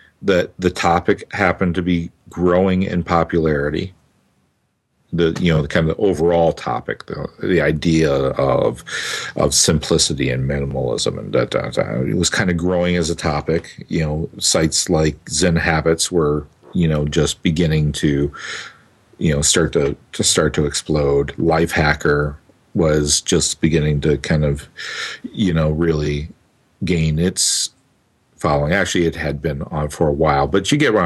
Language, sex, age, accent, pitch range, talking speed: English, male, 50-69, American, 75-90 Hz, 160 wpm